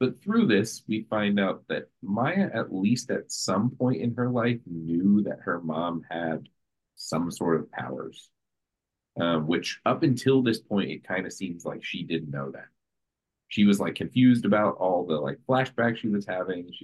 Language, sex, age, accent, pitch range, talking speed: English, male, 30-49, American, 80-110 Hz, 190 wpm